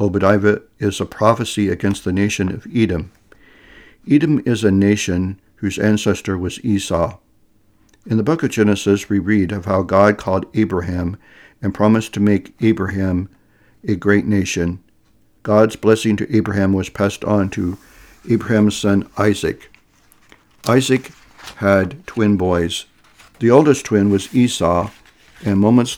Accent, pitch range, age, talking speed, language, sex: American, 100-115 Hz, 60-79, 135 wpm, English, male